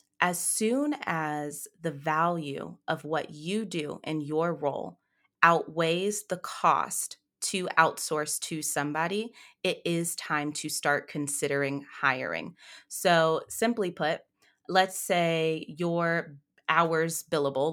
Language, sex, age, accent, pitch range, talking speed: English, female, 20-39, American, 155-190 Hz, 115 wpm